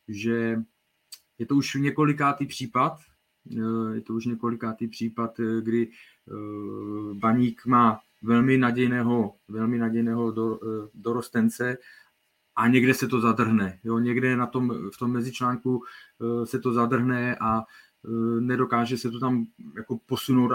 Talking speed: 120 wpm